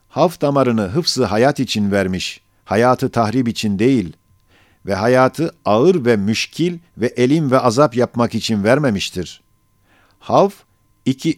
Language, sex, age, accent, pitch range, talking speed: Turkish, male, 50-69, native, 110-140 Hz, 125 wpm